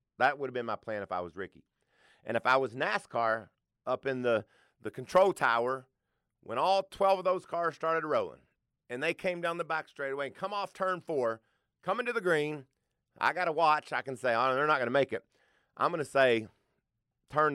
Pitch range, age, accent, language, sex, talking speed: 110-165 Hz, 30-49, American, English, male, 220 wpm